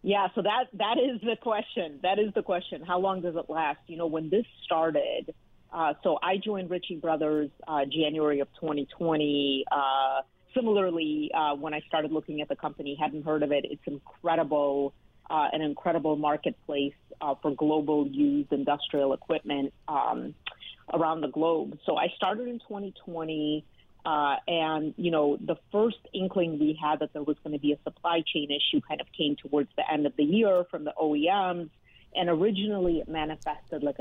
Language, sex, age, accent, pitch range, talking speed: English, female, 40-59, American, 145-175 Hz, 180 wpm